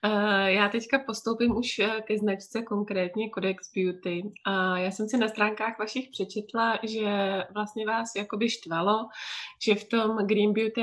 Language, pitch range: Czech, 200-225 Hz